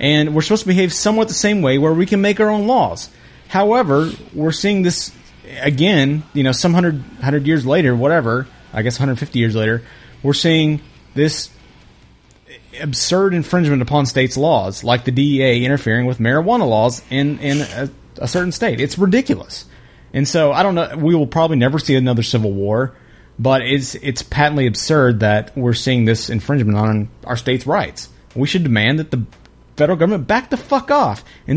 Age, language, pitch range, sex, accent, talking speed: 30-49, English, 125-170 Hz, male, American, 180 wpm